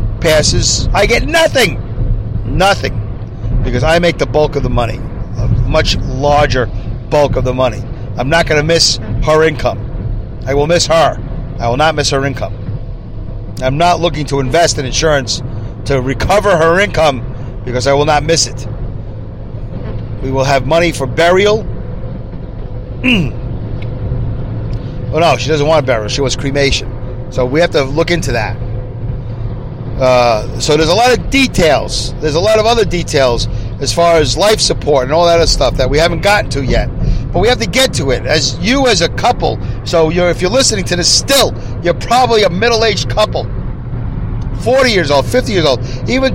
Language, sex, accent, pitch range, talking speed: English, male, American, 115-160 Hz, 180 wpm